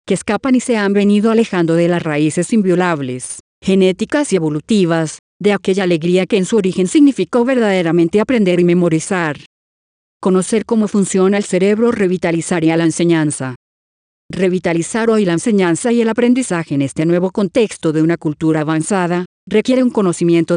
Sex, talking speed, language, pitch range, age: female, 155 wpm, English, 170-210 Hz, 40-59